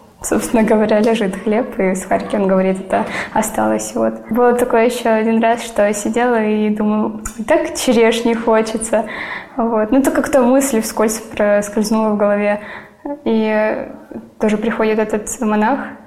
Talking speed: 145 wpm